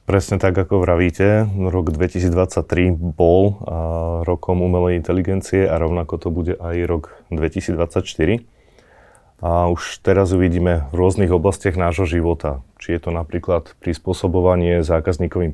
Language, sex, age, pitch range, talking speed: Slovak, male, 30-49, 80-95 Hz, 125 wpm